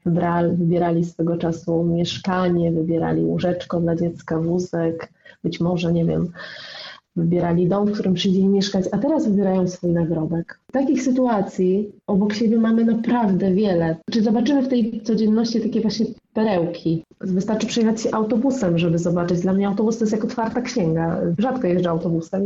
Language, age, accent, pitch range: Polish, 30-49, native, 180-225 Hz